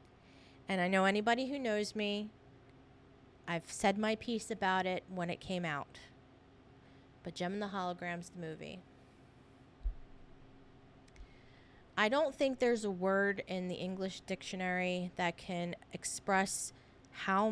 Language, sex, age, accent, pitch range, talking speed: English, female, 30-49, American, 180-225 Hz, 130 wpm